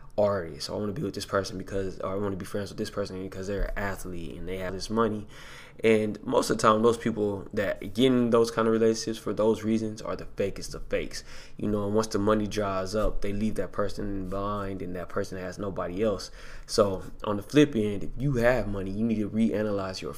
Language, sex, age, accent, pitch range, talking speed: English, male, 20-39, American, 95-110 Hz, 240 wpm